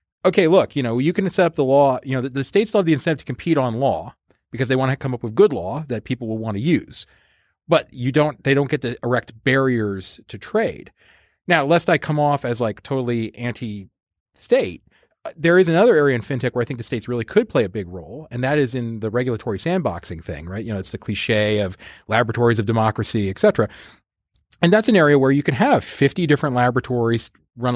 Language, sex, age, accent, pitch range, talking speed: English, male, 30-49, American, 115-145 Hz, 235 wpm